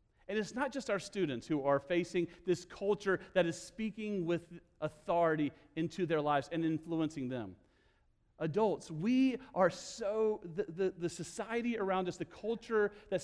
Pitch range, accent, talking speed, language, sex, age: 150-205 Hz, American, 160 wpm, English, male, 40-59